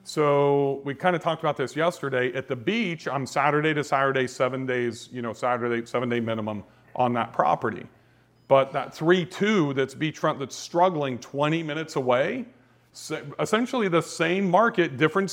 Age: 40-59